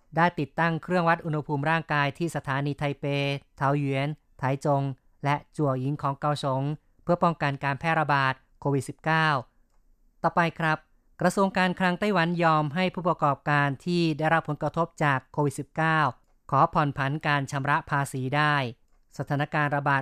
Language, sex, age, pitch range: Thai, female, 20-39, 140-160 Hz